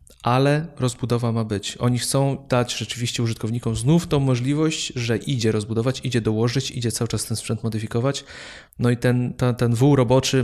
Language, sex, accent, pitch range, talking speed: Polish, male, native, 115-130 Hz, 165 wpm